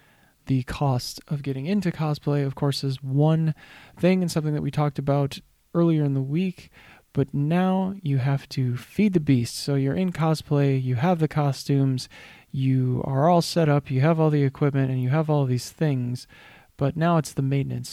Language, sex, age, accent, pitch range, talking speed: English, male, 20-39, American, 130-150 Hz, 195 wpm